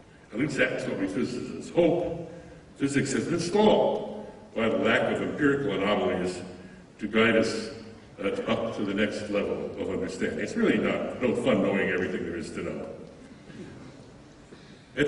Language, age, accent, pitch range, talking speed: English, 60-79, American, 115-170 Hz, 155 wpm